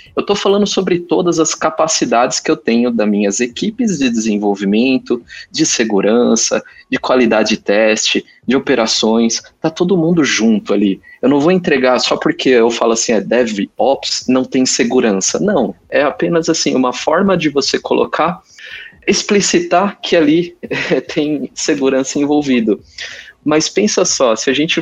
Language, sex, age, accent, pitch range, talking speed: Portuguese, male, 20-39, Brazilian, 115-160 Hz, 150 wpm